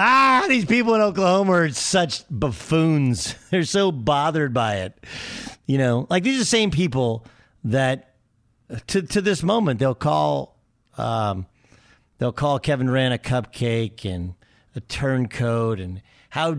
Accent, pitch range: American, 120-170 Hz